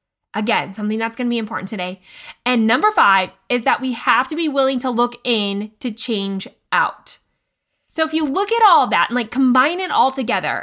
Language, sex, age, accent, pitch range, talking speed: English, female, 20-39, American, 220-300 Hz, 210 wpm